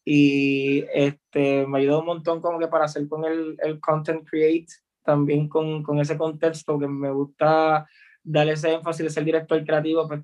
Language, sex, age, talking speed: Spanish, male, 20-39, 190 wpm